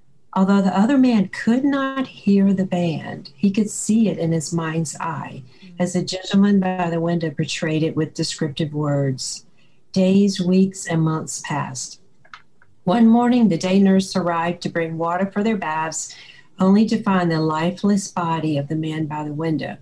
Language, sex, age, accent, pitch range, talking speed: English, female, 50-69, American, 160-195 Hz, 175 wpm